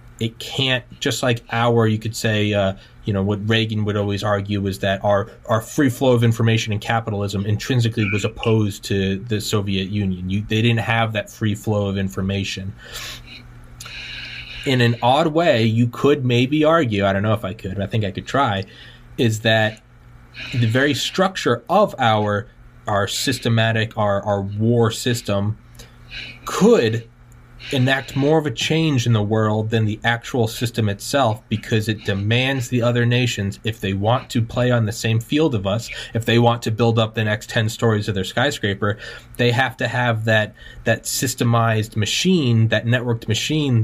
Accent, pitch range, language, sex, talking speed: American, 105-120 Hz, English, male, 180 wpm